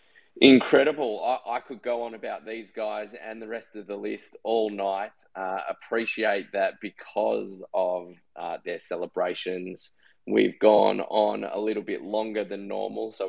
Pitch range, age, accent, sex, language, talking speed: 95-110 Hz, 20-39, Australian, male, English, 160 wpm